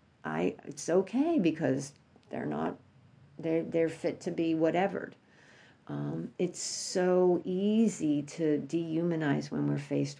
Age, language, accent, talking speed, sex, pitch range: 50-69, English, American, 125 wpm, female, 150-180 Hz